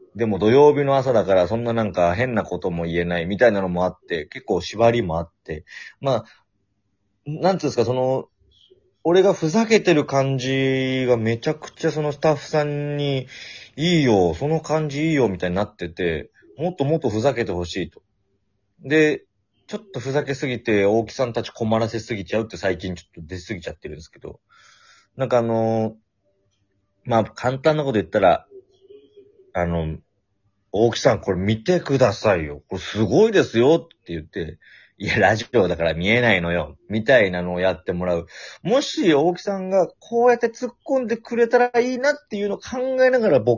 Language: Japanese